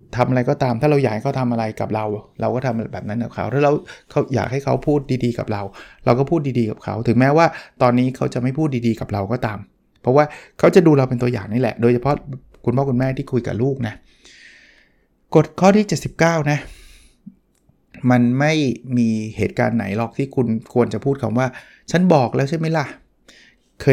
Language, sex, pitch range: Thai, male, 115-145 Hz